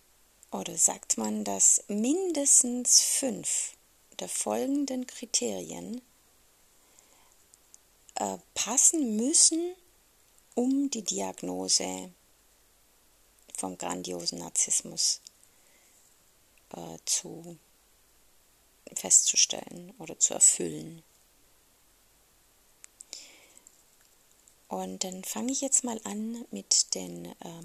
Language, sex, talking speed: German, female, 75 wpm